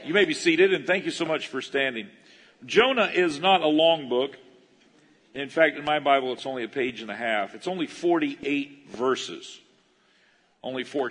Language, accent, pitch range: English, American, 105-145 Hz